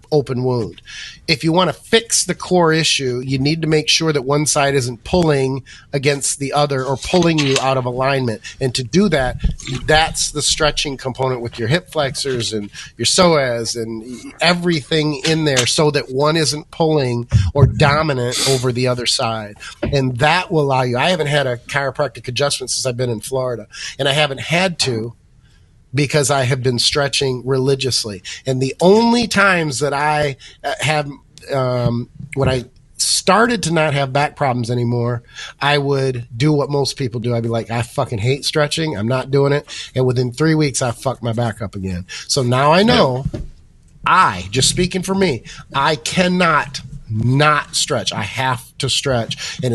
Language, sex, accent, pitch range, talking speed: English, male, American, 120-150 Hz, 180 wpm